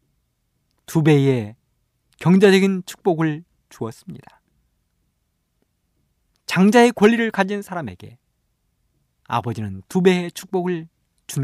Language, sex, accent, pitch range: Korean, male, native, 115-185 Hz